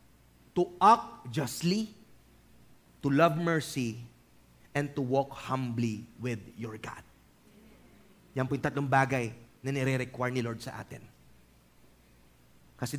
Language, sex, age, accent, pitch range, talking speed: English, male, 30-49, Filipino, 130-170 Hz, 105 wpm